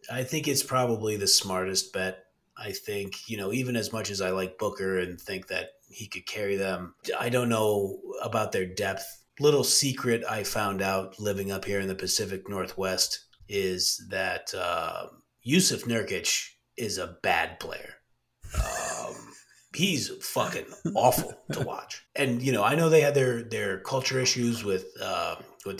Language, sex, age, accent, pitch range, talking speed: English, male, 30-49, American, 100-135 Hz, 165 wpm